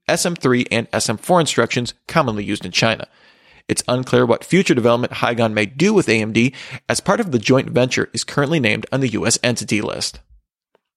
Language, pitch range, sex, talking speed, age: English, 115-155 Hz, male, 175 wpm, 40-59